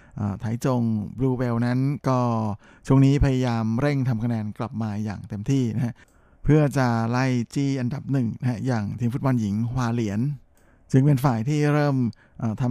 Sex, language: male, Thai